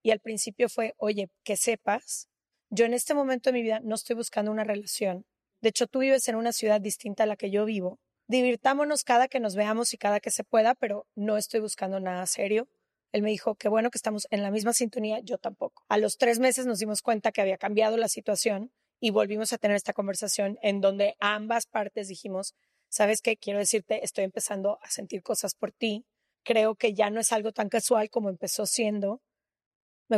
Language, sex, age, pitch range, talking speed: Spanish, female, 20-39, 205-240 Hz, 215 wpm